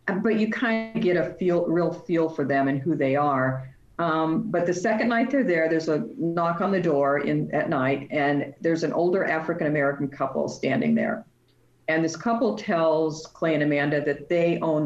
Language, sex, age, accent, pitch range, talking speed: English, female, 50-69, American, 145-170 Hz, 200 wpm